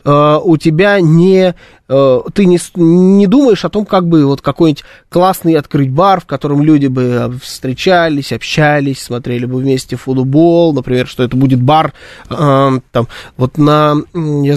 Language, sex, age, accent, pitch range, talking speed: Russian, male, 20-39, native, 130-170 Hz, 155 wpm